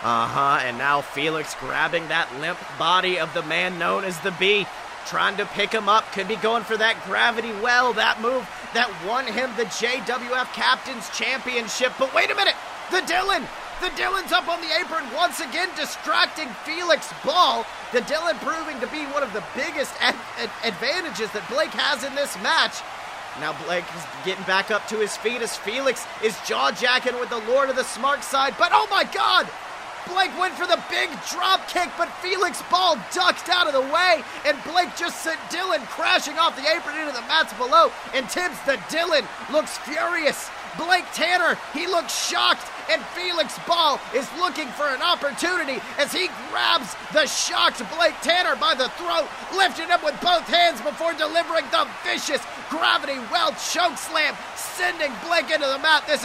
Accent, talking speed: American, 180 wpm